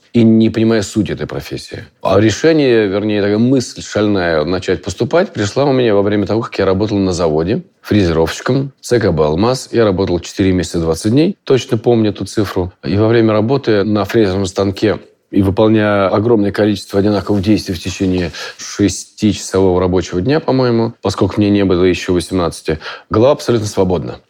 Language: Russian